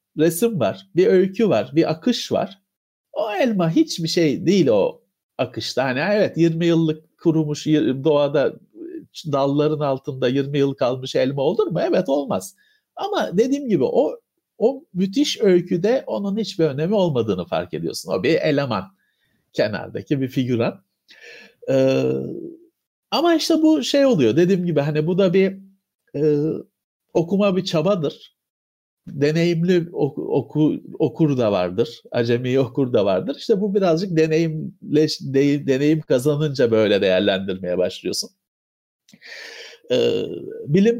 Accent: native